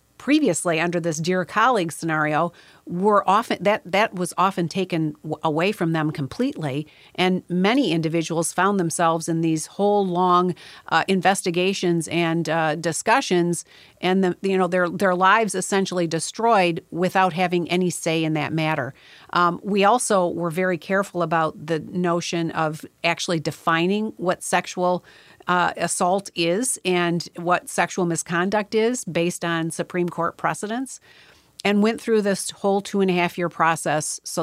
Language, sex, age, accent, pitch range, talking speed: English, female, 40-59, American, 165-190 Hz, 150 wpm